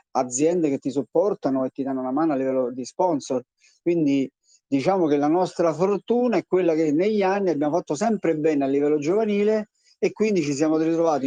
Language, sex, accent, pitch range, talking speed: Italian, male, native, 140-175 Hz, 190 wpm